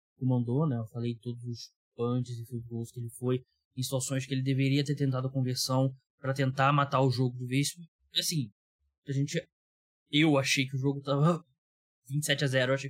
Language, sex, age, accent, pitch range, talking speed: Portuguese, male, 20-39, Brazilian, 120-155 Hz, 185 wpm